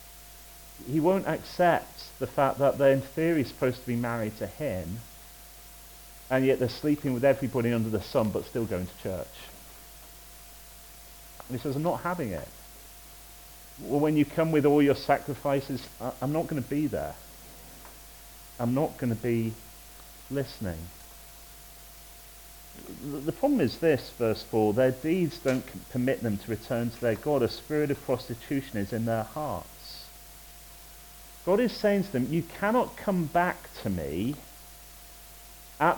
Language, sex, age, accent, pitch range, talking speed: English, male, 40-59, British, 115-155 Hz, 155 wpm